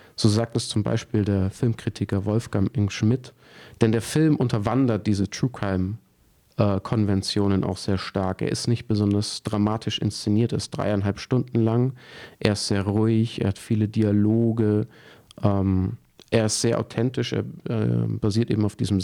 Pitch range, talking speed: 105-120 Hz, 160 wpm